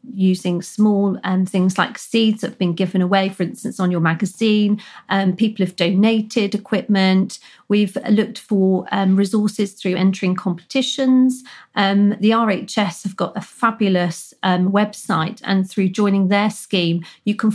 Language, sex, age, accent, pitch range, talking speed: English, female, 40-59, British, 190-215 Hz, 155 wpm